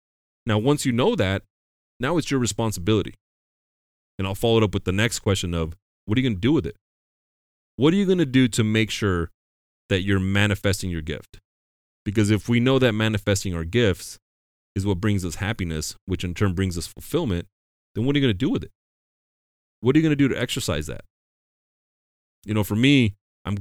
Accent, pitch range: American, 85-110 Hz